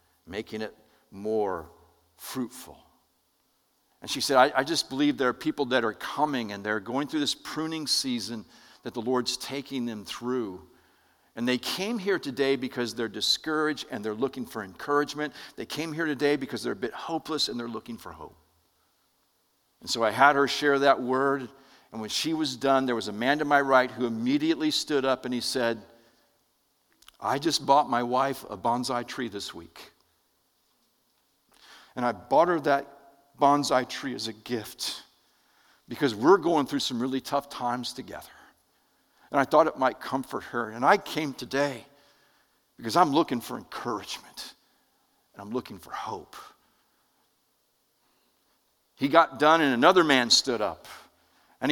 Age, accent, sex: 50-69, American, male